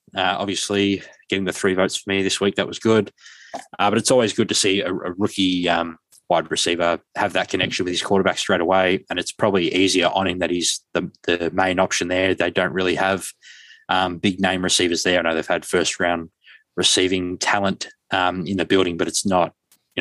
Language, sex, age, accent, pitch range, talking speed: English, male, 20-39, Australian, 90-100 Hz, 215 wpm